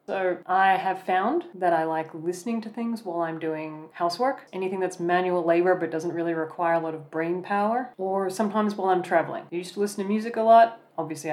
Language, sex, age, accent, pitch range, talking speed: English, female, 30-49, Australian, 160-190 Hz, 215 wpm